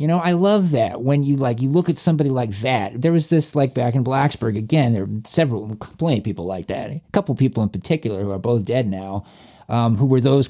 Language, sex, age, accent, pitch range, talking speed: English, male, 50-69, American, 115-165 Hz, 250 wpm